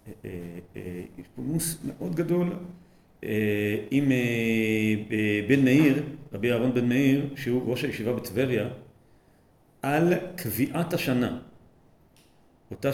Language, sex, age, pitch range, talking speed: Hebrew, male, 40-59, 110-145 Hz, 90 wpm